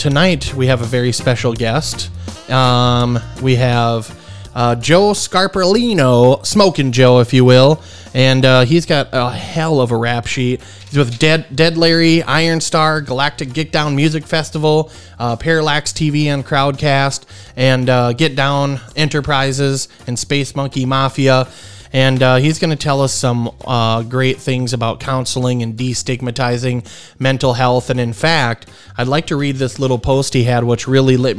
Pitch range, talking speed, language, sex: 120-145 Hz, 165 wpm, English, male